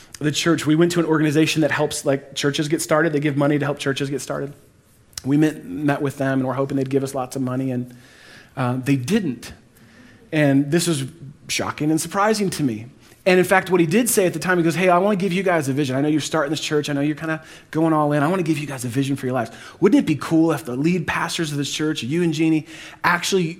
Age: 30-49